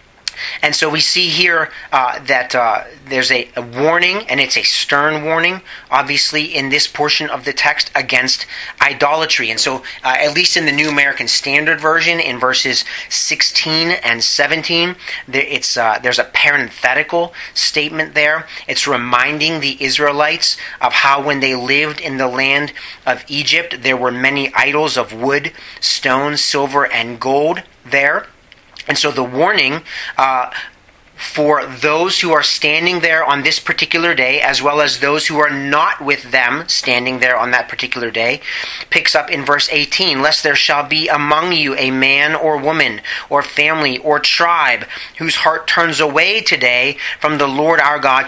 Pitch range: 130-155 Hz